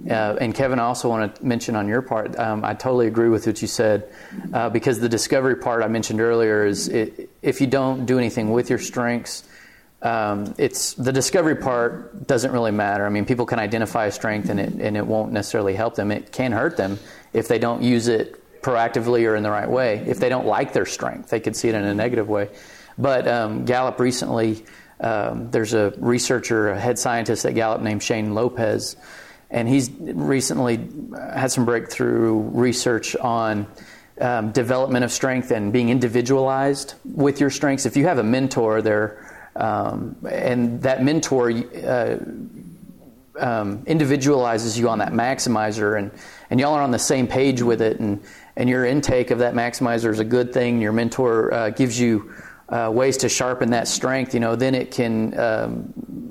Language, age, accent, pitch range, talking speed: English, 30-49, American, 110-130 Hz, 190 wpm